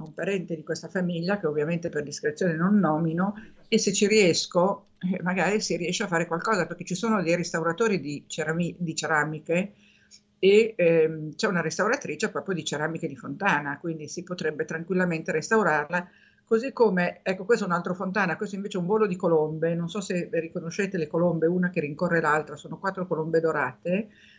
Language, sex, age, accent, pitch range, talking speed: Italian, female, 50-69, native, 165-195 Hz, 180 wpm